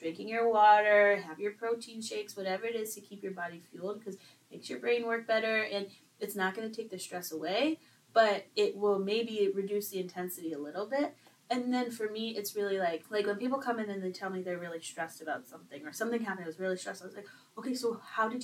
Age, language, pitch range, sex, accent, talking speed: 20-39, English, 200-295 Hz, female, American, 245 wpm